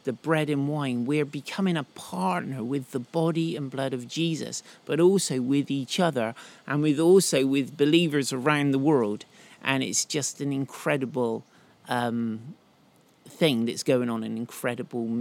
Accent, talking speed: British, 160 wpm